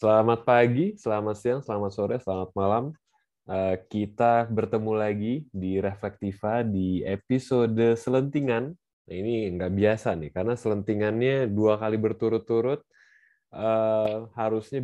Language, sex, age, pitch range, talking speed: Indonesian, male, 20-39, 100-120 Hz, 105 wpm